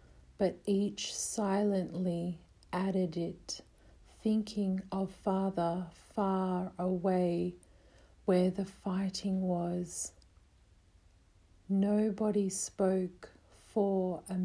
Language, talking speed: English, 75 wpm